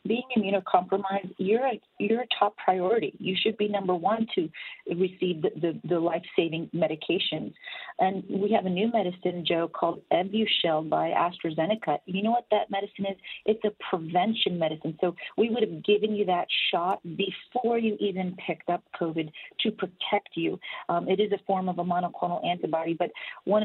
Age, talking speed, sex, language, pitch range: 40-59, 170 wpm, female, English, 175-210 Hz